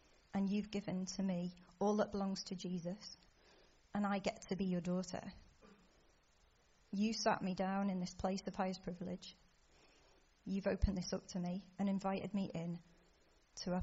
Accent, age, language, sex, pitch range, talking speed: British, 40-59, English, female, 180-200 Hz, 170 wpm